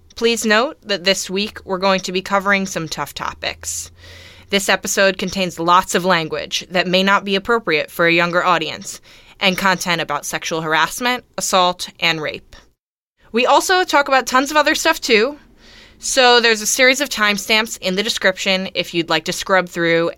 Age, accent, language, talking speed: 20-39, American, English, 180 wpm